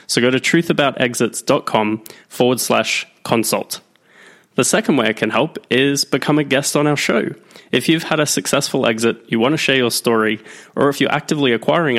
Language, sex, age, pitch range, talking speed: English, male, 20-39, 115-145 Hz, 185 wpm